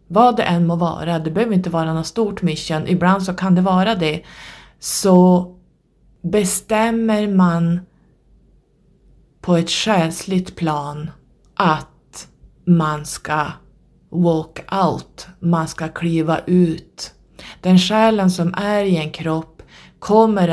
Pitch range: 160-185 Hz